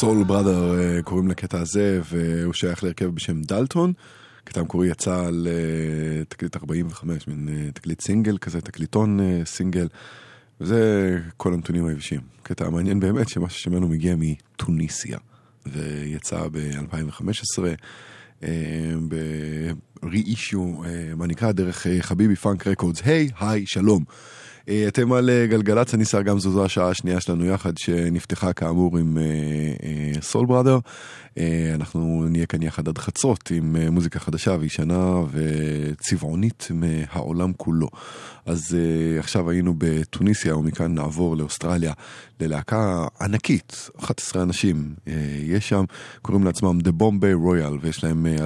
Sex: male